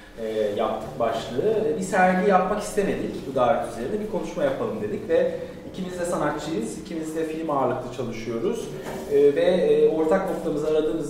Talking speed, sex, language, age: 155 wpm, male, Turkish, 30-49